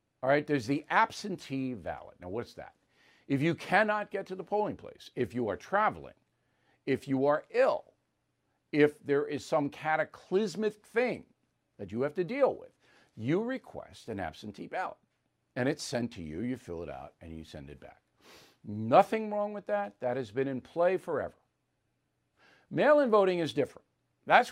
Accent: American